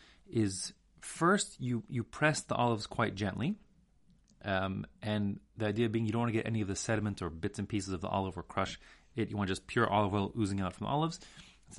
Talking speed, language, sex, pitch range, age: 230 wpm, English, male, 95-125 Hz, 30-49